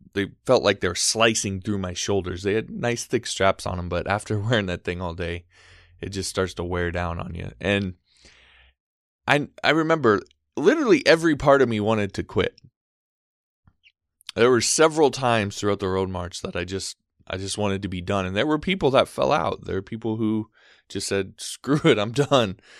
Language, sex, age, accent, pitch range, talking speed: English, male, 20-39, American, 95-115 Hz, 205 wpm